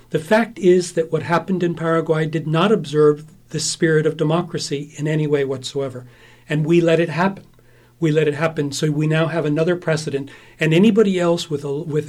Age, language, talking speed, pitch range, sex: 40-59, English, 200 wpm, 145-170 Hz, male